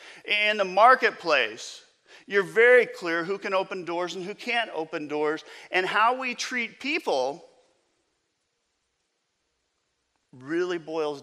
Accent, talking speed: American, 120 wpm